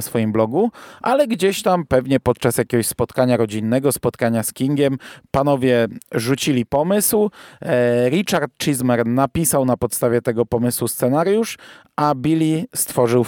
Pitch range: 120-155 Hz